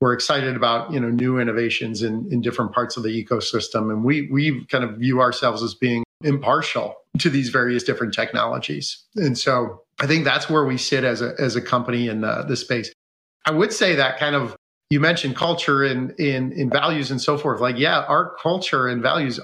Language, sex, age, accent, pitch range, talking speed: English, male, 40-59, American, 120-150 Hz, 215 wpm